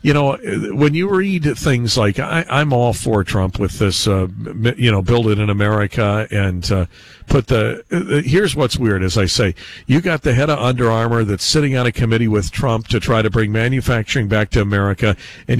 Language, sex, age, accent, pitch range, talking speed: English, male, 50-69, American, 110-130 Hz, 210 wpm